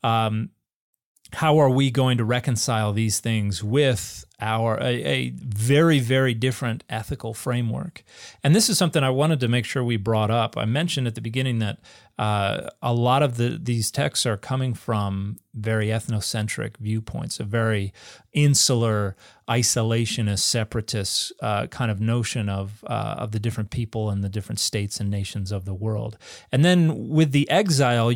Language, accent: English, American